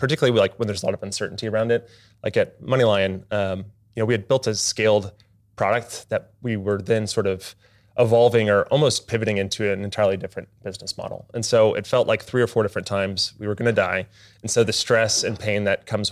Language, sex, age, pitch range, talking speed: English, male, 30-49, 100-115 Hz, 230 wpm